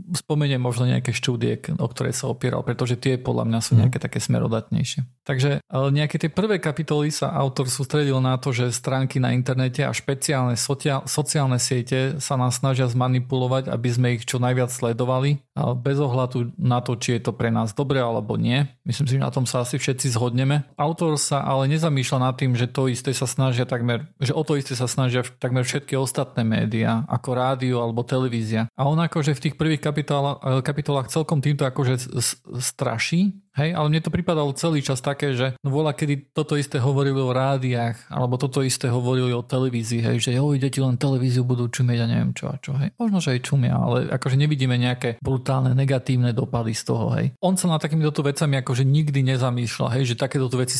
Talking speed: 200 wpm